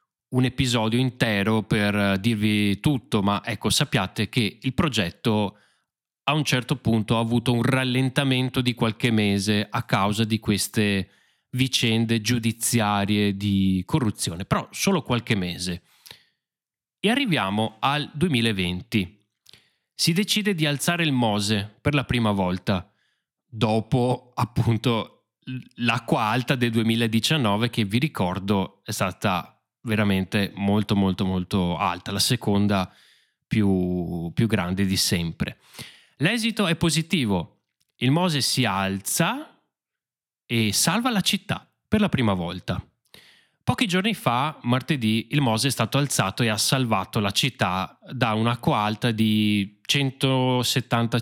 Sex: male